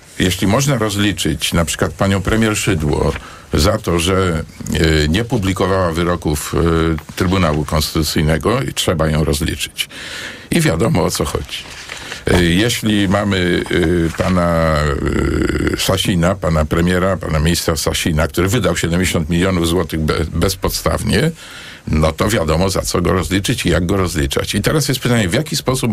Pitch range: 85-110 Hz